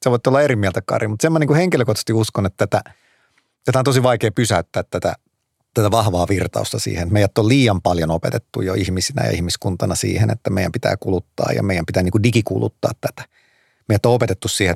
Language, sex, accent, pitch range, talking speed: Finnish, male, native, 95-120 Hz, 200 wpm